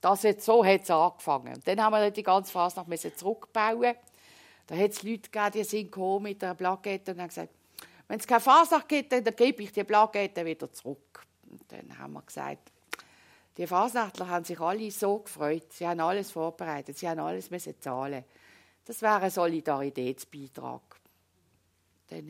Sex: female